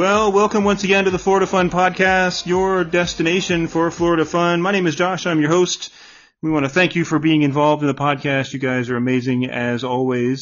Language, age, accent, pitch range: English, 30-49, American, 125-175 Hz